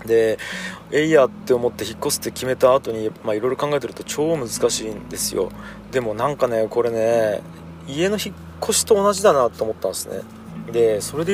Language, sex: Japanese, male